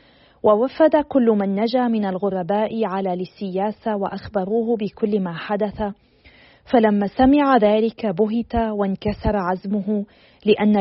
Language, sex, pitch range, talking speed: Arabic, female, 200-230 Hz, 105 wpm